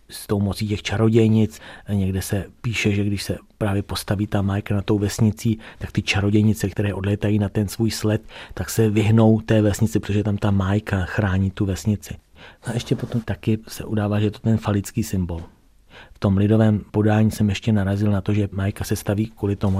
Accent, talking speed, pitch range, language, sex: native, 200 wpm, 95-105 Hz, Czech, male